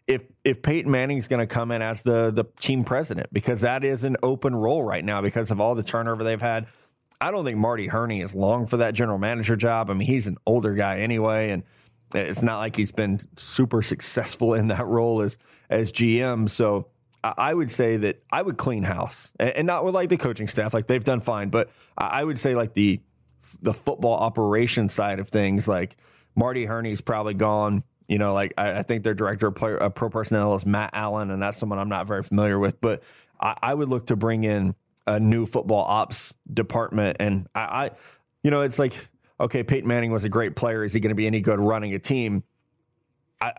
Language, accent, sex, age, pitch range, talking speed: English, American, male, 20-39, 105-120 Hz, 220 wpm